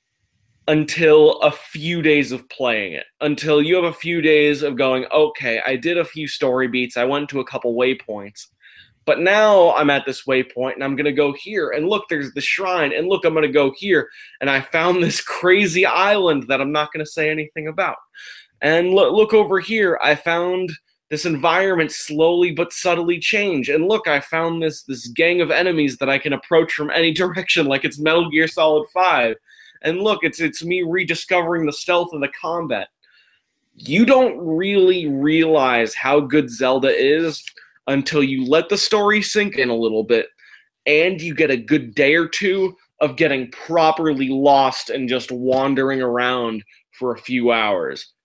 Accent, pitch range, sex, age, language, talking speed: American, 135-175 Hz, male, 20-39, English, 185 wpm